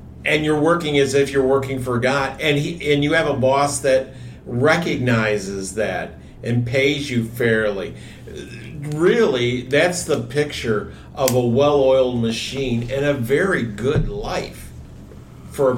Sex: male